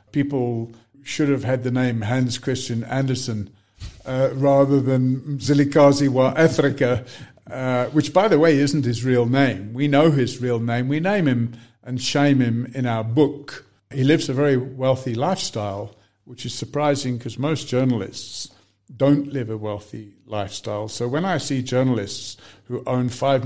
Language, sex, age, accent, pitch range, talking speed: English, male, 50-69, British, 115-140 Hz, 160 wpm